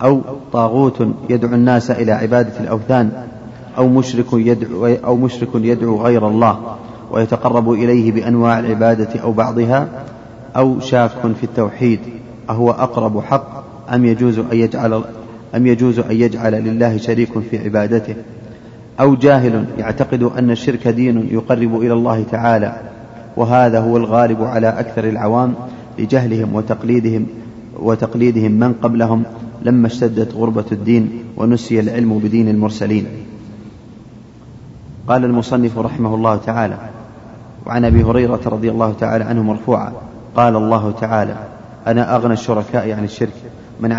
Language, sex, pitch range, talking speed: Arabic, male, 110-120 Hz, 125 wpm